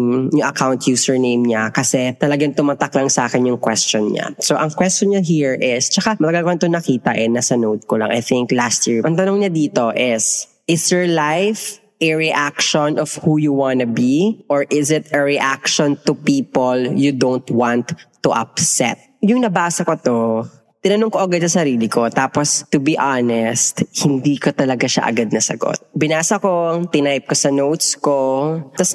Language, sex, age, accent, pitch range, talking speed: Filipino, female, 20-39, native, 125-160 Hz, 180 wpm